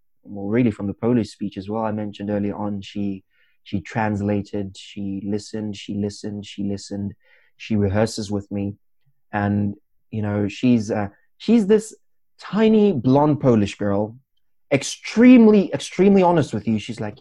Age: 20-39